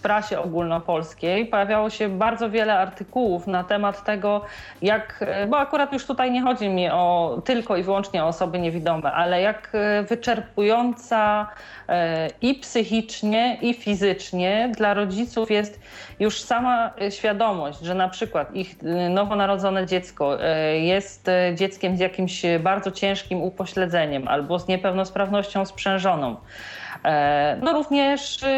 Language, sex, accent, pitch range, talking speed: Polish, female, native, 180-215 Hz, 120 wpm